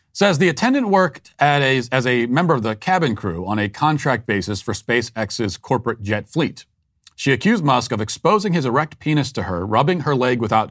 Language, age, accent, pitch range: English, 40-59, American, 105-135 Hz